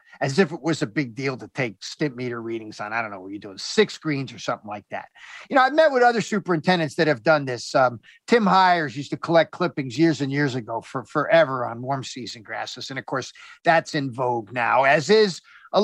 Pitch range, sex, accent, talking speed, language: 140-200 Hz, male, American, 240 wpm, English